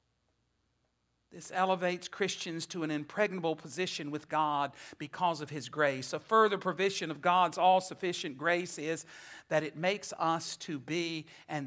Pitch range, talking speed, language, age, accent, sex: 145-190 Hz, 145 wpm, English, 60-79, American, male